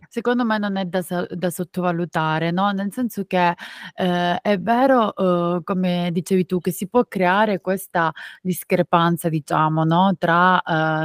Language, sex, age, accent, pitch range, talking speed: Italian, female, 30-49, native, 175-205 Hz, 150 wpm